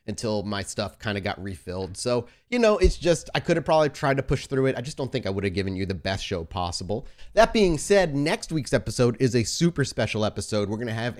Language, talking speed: English, 255 wpm